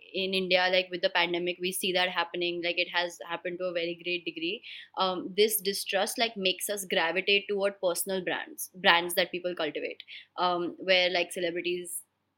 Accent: Indian